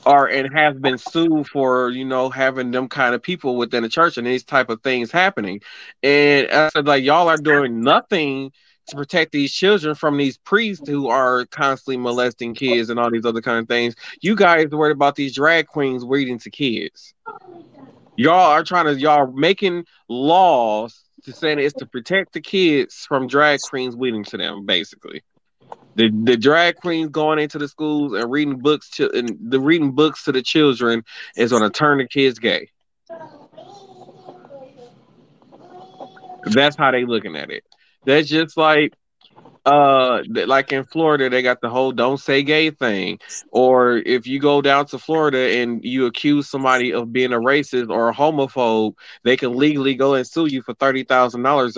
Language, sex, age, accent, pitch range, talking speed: English, male, 30-49, American, 125-155 Hz, 185 wpm